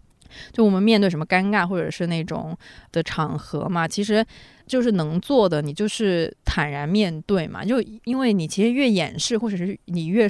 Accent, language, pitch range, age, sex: native, Chinese, 160-210 Hz, 20-39, female